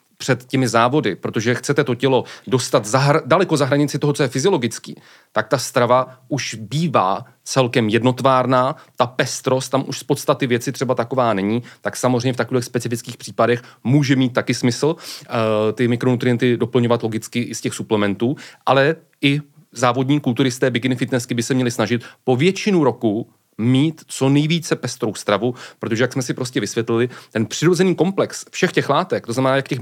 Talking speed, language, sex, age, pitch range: 175 wpm, Czech, male, 30-49, 115-135 Hz